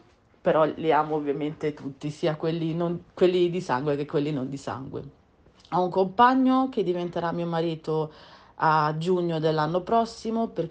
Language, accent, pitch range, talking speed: Italian, native, 150-180 Hz, 155 wpm